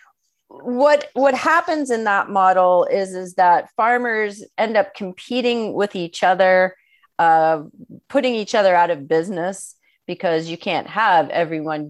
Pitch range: 165-220 Hz